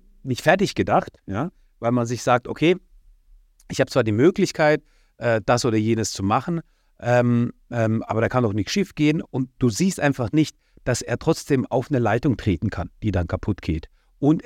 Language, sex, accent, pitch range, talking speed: German, male, German, 100-140 Hz, 190 wpm